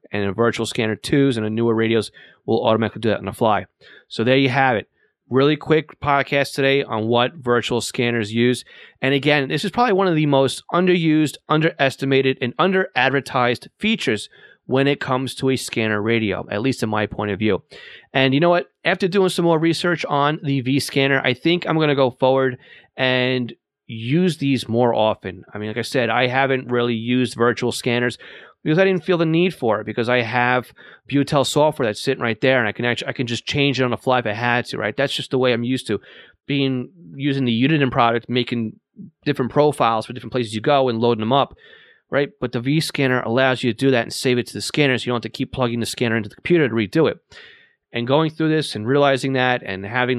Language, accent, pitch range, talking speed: English, American, 115-140 Hz, 230 wpm